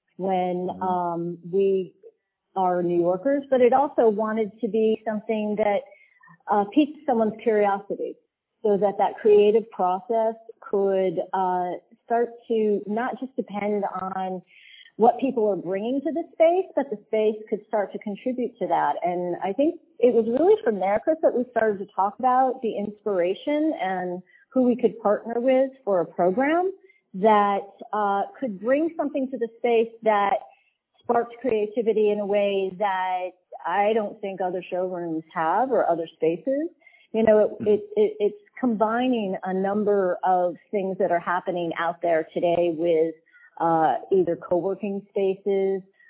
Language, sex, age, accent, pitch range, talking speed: English, female, 40-59, American, 185-250 Hz, 150 wpm